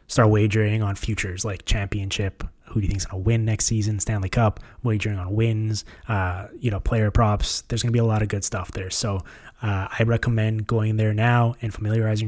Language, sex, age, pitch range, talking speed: English, male, 20-39, 100-115 Hz, 220 wpm